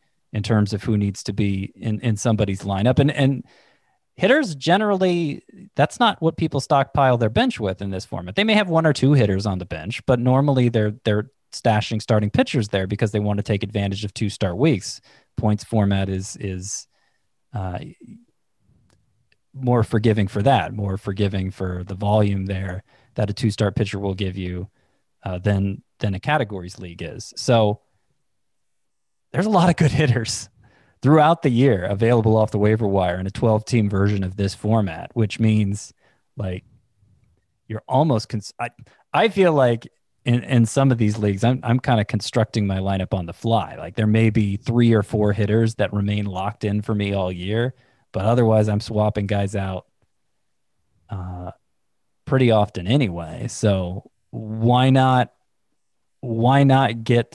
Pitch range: 100-125 Hz